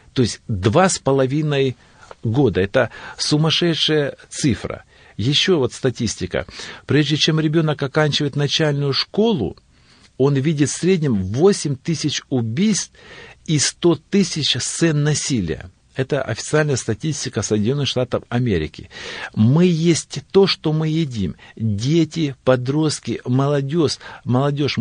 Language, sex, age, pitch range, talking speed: Russian, male, 50-69, 120-155 Hz, 110 wpm